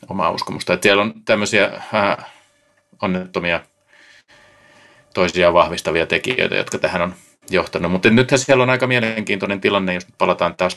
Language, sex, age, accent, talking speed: Finnish, male, 30-49, native, 130 wpm